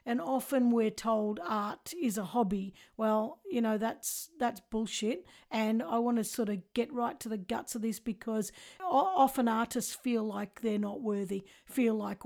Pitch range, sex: 225-275 Hz, female